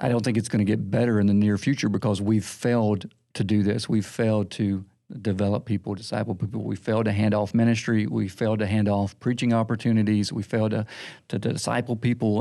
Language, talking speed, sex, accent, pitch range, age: English, 215 wpm, male, American, 105-120 Hz, 50-69